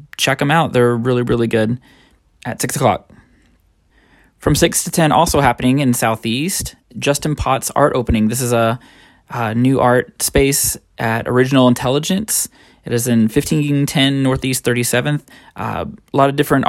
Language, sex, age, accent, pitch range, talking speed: English, male, 20-39, American, 120-155 Hz, 155 wpm